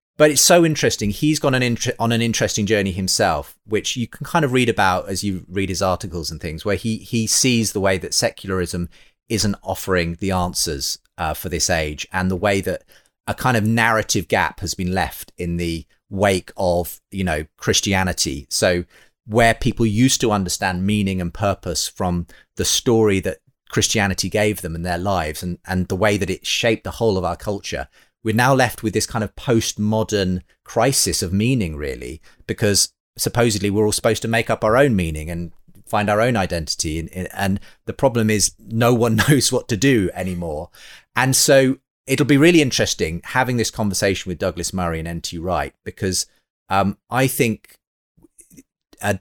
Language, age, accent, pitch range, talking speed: English, 30-49, British, 90-115 Hz, 185 wpm